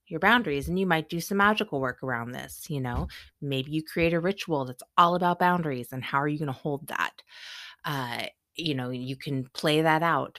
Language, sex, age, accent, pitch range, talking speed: English, female, 30-49, American, 135-175 Hz, 220 wpm